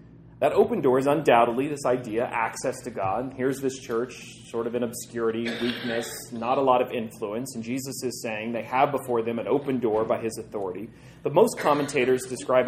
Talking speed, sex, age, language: 195 wpm, male, 30-49, English